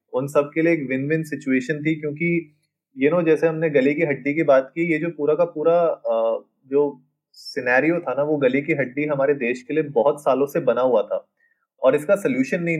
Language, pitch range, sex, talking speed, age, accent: Hindi, 130-165 Hz, male, 235 wpm, 20-39, native